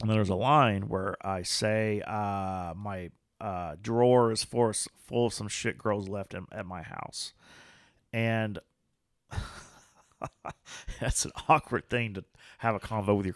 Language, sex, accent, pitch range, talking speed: English, male, American, 100-135 Hz, 150 wpm